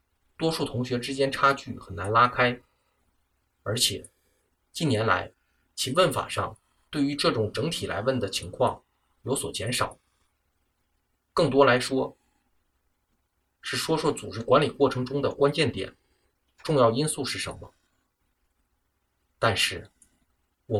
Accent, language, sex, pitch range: native, Chinese, male, 85-135 Hz